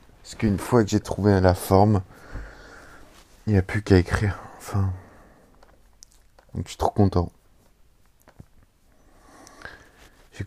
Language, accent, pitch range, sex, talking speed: French, French, 90-100 Hz, male, 115 wpm